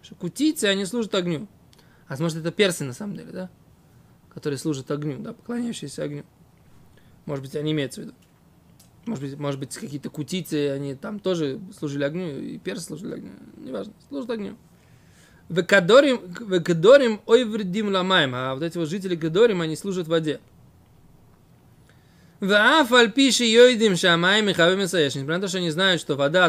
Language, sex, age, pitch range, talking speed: Russian, male, 20-39, 150-220 Hz, 150 wpm